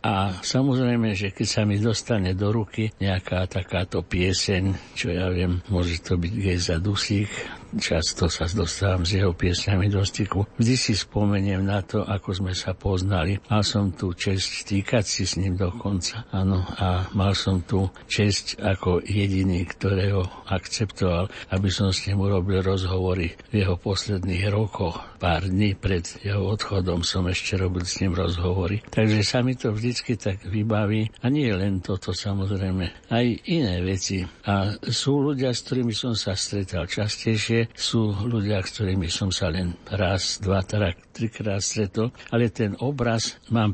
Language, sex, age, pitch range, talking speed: Slovak, male, 60-79, 95-110 Hz, 160 wpm